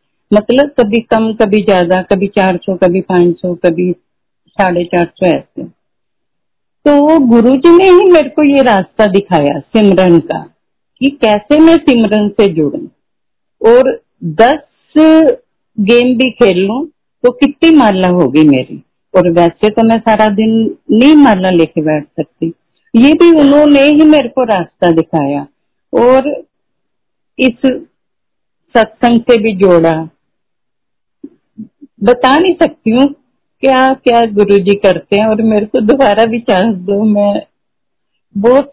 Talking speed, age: 130 wpm, 50-69